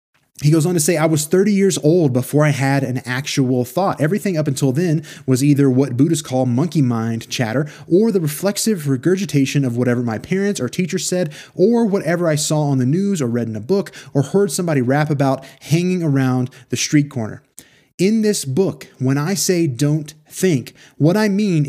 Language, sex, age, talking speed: English, male, 20-39, 200 wpm